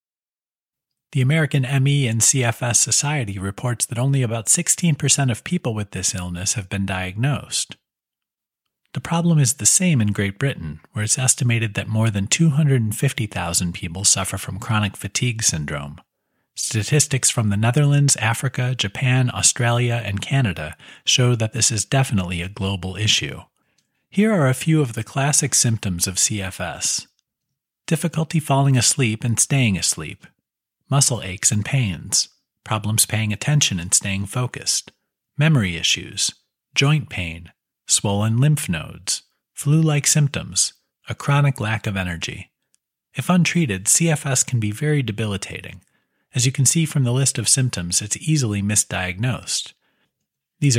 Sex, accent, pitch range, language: male, American, 100-140 Hz, English